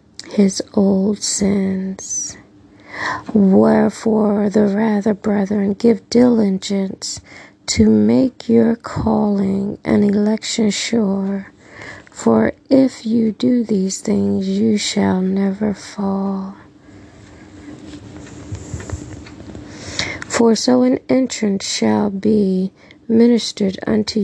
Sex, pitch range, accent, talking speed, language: female, 190-225 Hz, American, 85 wpm, English